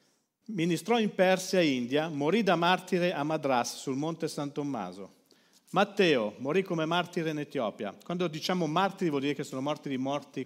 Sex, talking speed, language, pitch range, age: male, 170 wpm, Italian, 135-190 Hz, 50-69